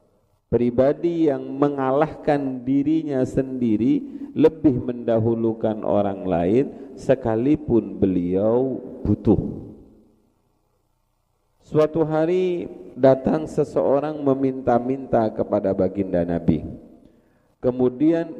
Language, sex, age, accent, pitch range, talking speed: Indonesian, male, 40-59, native, 110-150 Hz, 70 wpm